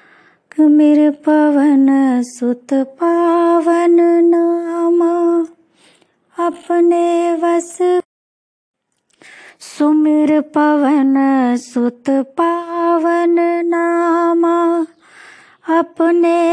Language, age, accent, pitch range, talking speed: Hindi, 30-49, native, 300-345 Hz, 45 wpm